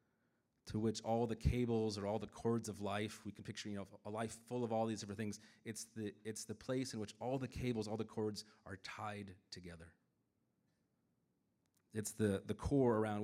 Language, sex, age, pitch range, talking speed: English, male, 30-49, 105-115 Hz, 190 wpm